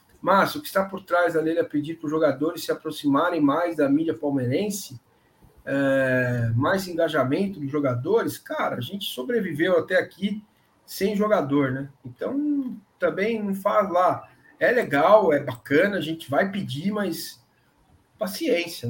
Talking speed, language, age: 145 wpm, Portuguese, 50-69